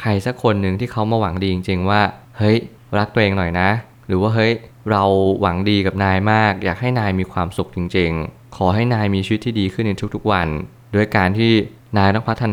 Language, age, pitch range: Thai, 20-39, 95-115 Hz